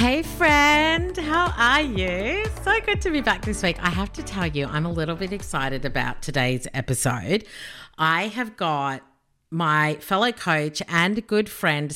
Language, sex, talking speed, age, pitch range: English, female, 170 wpm, 40-59, 150-210 Hz